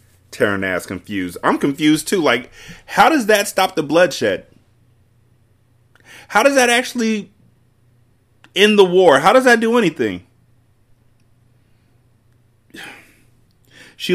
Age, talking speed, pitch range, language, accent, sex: 30-49, 110 wpm, 105-125 Hz, English, American, male